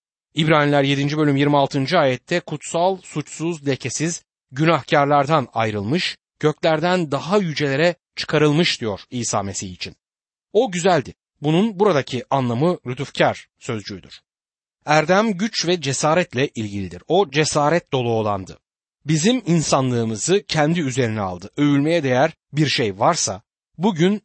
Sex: male